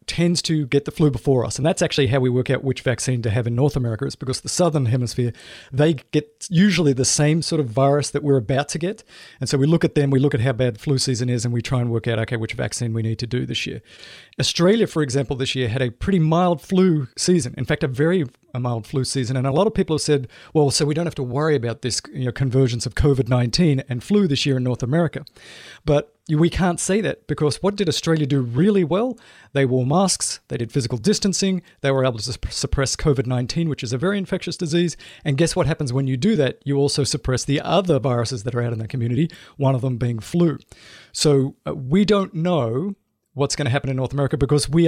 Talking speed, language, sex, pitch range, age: 245 wpm, English, male, 125-155 Hz, 40-59